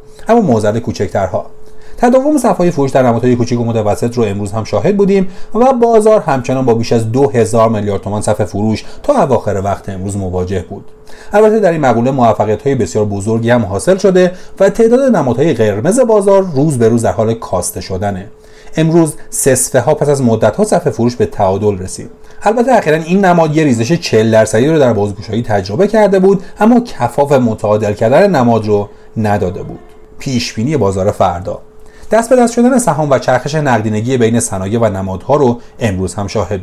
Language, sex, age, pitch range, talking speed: Persian, male, 40-59, 110-165 Hz, 170 wpm